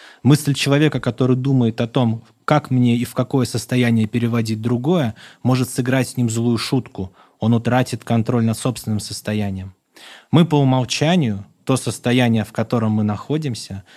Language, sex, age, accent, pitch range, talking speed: Russian, male, 20-39, native, 105-130 Hz, 150 wpm